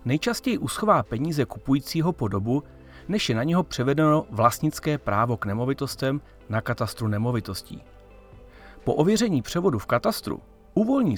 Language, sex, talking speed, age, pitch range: Czech, male, 130 wpm, 40-59, 105-155 Hz